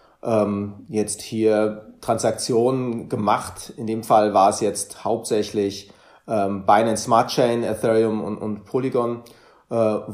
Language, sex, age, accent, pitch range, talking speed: German, male, 30-49, German, 105-135 Hz, 125 wpm